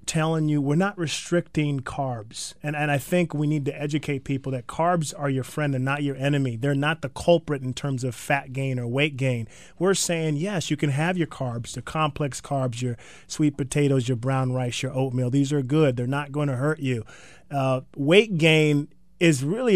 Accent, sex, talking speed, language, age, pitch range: American, male, 210 wpm, English, 30-49, 140-160 Hz